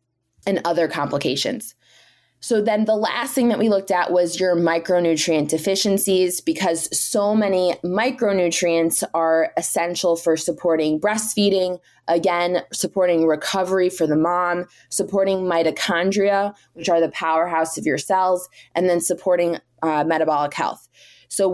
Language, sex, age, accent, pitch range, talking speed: English, female, 20-39, American, 165-195 Hz, 130 wpm